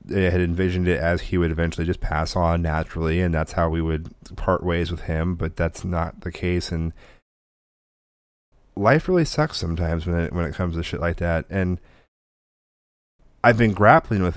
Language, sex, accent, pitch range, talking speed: English, male, American, 85-100 Hz, 190 wpm